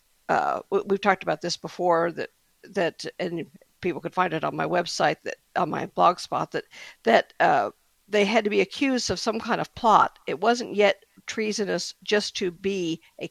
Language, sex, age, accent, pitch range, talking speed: English, female, 50-69, American, 180-220 Hz, 190 wpm